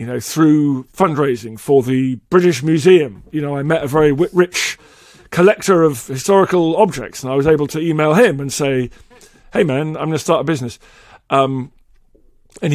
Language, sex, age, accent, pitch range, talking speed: English, male, 40-59, British, 140-195 Hz, 180 wpm